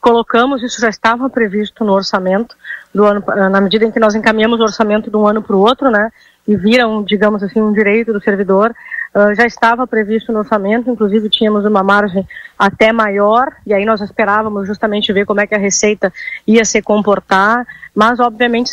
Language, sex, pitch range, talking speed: Portuguese, female, 205-235 Hz, 195 wpm